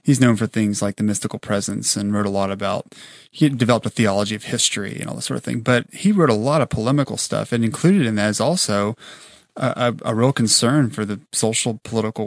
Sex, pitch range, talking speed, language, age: male, 110-135 Hz, 240 wpm, English, 30-49